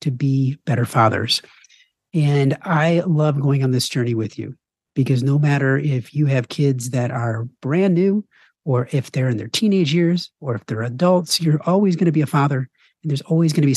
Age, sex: 40-59, male